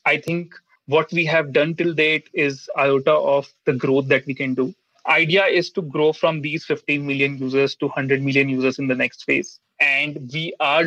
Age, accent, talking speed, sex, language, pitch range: 30-49, Indian, 205 wpm, male, English, 135-165 Hz